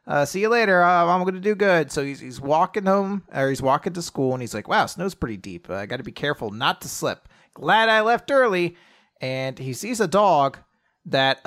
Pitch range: 140-210 Hz